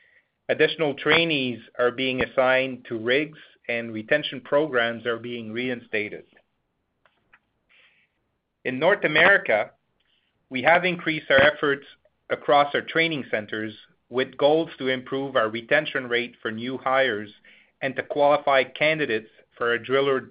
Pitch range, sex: 120-150 Hz, male